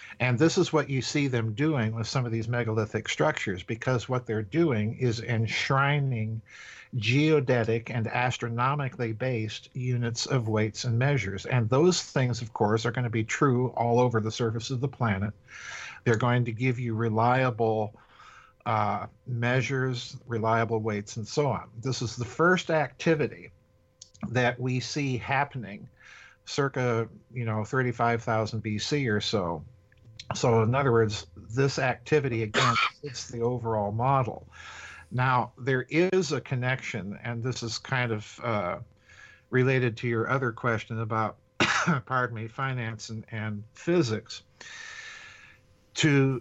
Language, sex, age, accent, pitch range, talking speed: English, male, 50-69, American, 115-135 Hz, 135 wpm